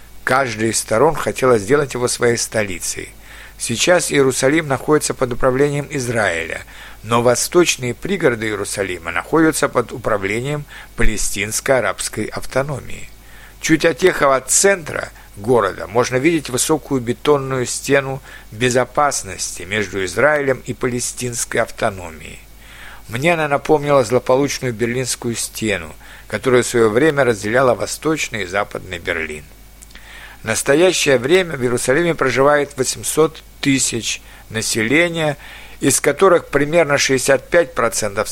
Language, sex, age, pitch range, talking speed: Russian, male, 60-79, 115-145 Hz, 105 wpm